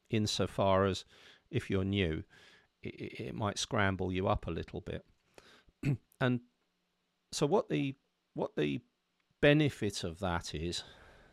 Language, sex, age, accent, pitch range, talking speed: English, male, 50-69, British, 90-120 Hz, 125 wpm